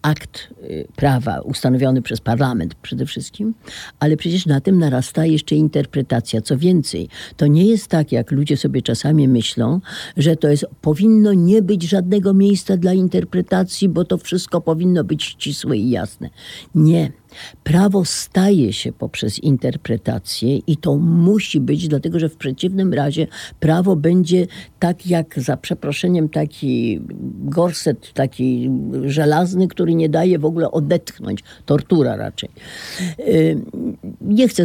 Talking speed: 135 wpm